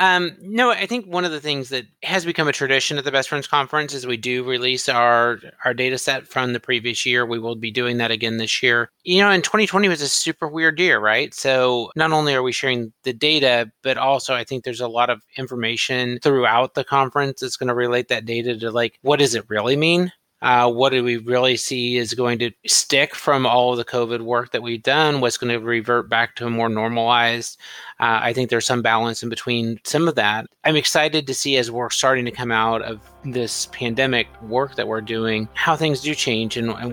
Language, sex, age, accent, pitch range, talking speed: English, male, 30-49, American, 115-135 Hz, 230 wpm